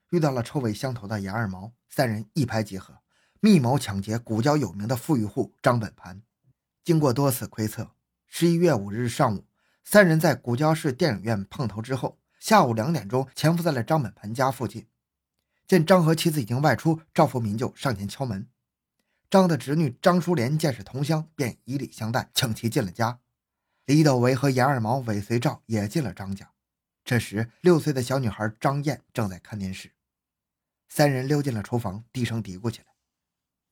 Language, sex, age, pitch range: Chinese, male, 20-39, 105-150 Hz